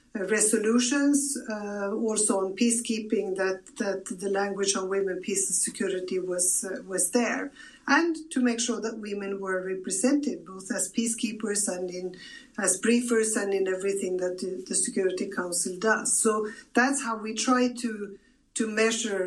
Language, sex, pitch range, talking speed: English, female, 195-245 Hz, 155 wpm